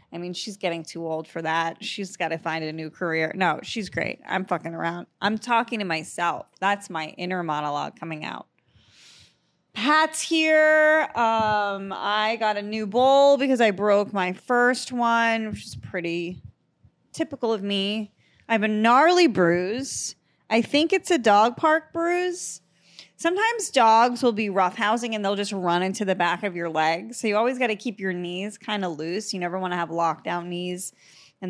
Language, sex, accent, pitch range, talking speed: English, female, American, 180-245 Hz, 185 wpm